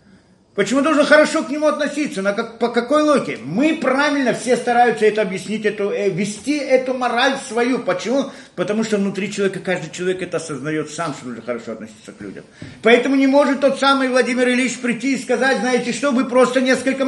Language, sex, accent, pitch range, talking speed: Russian, male, native, 200-275 Hz, 190 wpm